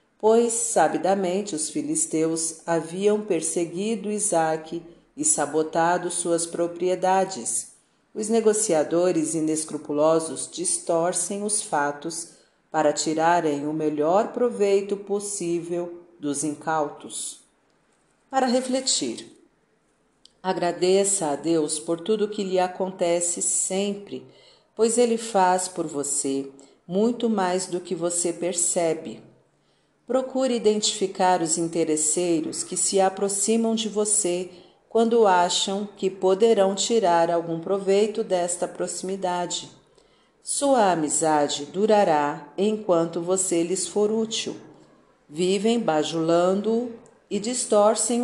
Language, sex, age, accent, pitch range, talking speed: Portuguese, female, 50-69, Brazilian, 165-215 Hz, 95 wpm